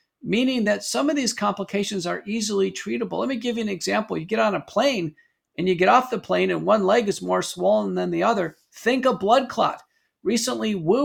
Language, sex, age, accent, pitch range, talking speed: English, male, 50-69, American, 195-255 Hz, 225 wpm